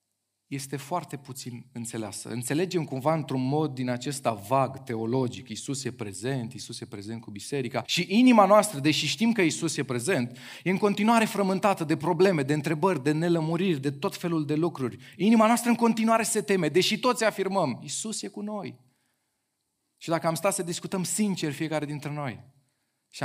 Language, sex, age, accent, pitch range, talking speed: Romanian, male, 30-49, native, 125-155 Hz, 175 wpm